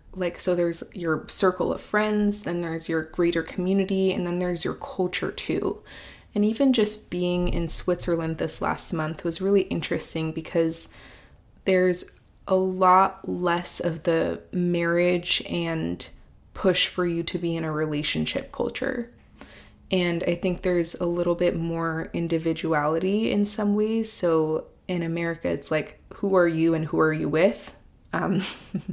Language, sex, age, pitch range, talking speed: English, female, 20-39, 165-190 Hz, 155 wpm